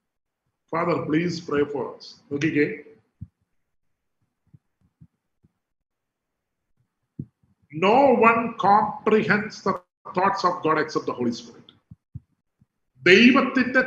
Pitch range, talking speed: 135-185 Hz, 80 wpm